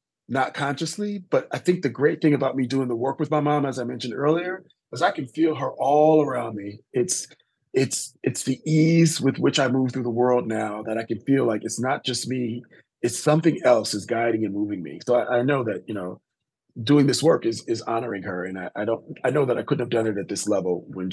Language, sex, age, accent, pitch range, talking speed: English, male, 30-49, American, 110-150 Hz, 250 wpm